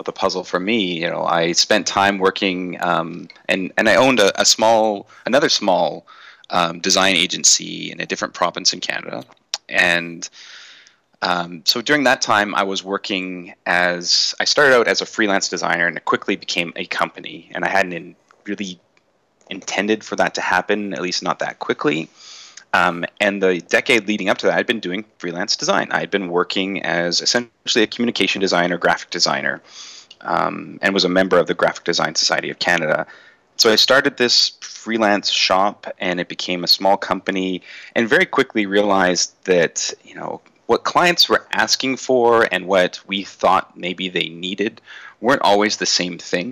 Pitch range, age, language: 90-105 Hz, 30-49, English